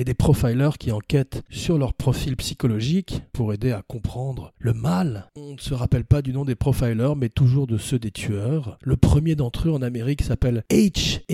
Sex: male